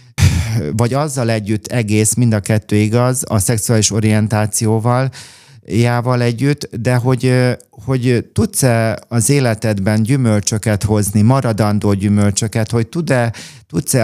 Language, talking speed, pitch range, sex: Hungarian, 105 wpm, 105-120 Hz, male